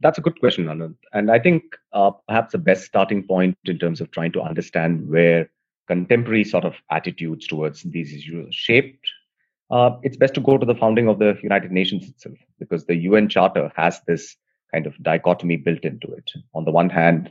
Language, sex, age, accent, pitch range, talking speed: English, male, 30-49, Indian, 85-120 Hz, 205 wpm